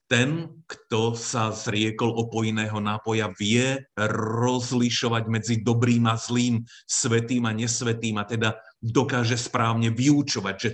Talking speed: 115 wpm